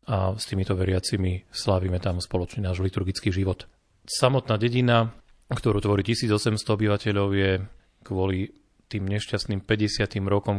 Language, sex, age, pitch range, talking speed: Slovak, male, 30-49, 95-110 Hz, 125 wpm